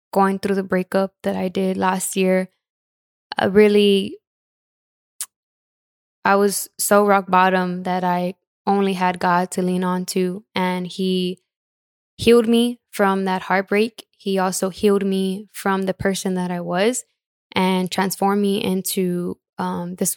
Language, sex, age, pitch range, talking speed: English, female, 10-29, 185-200 Hz, 145 wpm